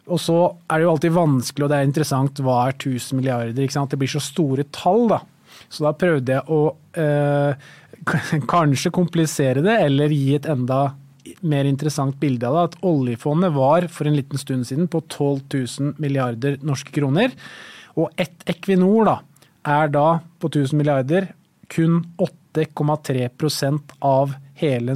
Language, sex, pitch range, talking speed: English, male, 135-155 Hz, 170 wpm